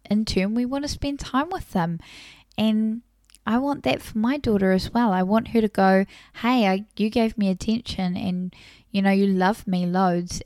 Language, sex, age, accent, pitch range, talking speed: English, female, 10-29, Australian, 185-225 Hz, 205 wpm